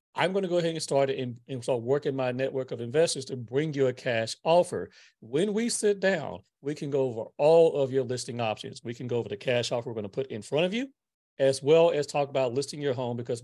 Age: 40-59